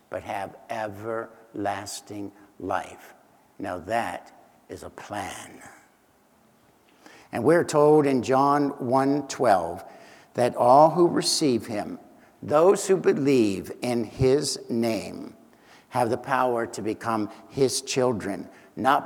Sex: male